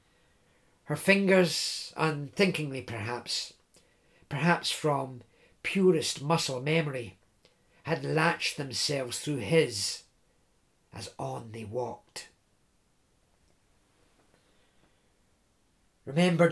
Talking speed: 70 wpm